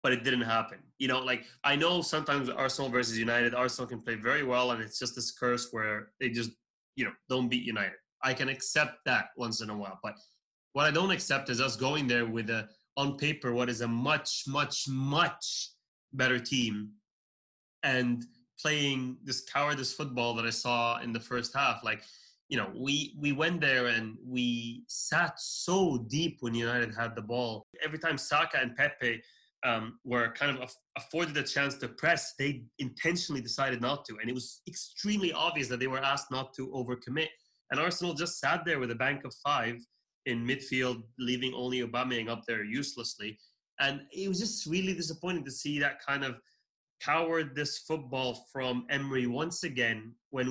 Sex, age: male, 20-39